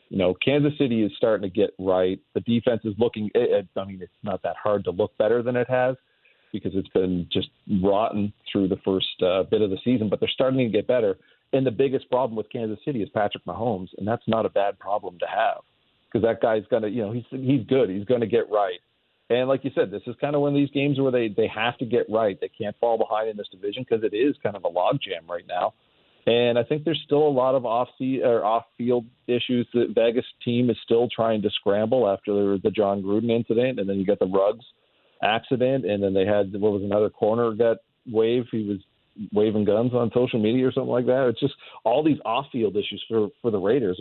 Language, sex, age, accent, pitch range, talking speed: English, male, 40-59, American, 100-125 Hz, 240 wpm